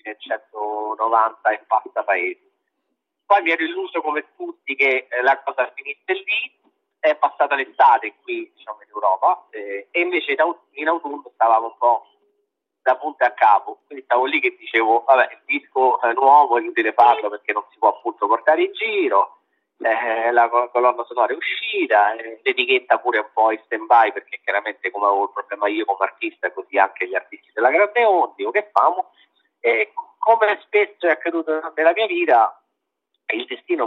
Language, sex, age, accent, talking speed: Italian, male, 40-59, native, 180 wpm